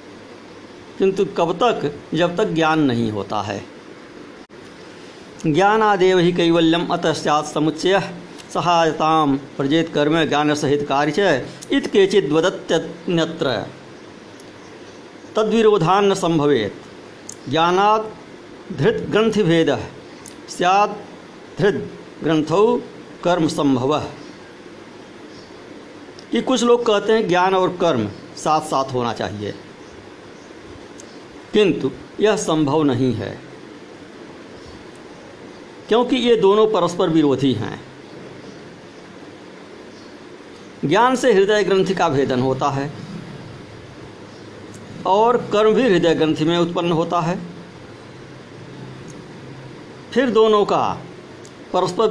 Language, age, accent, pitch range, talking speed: Hindi, 50-69, native, 145-195 Hz, 85 wpm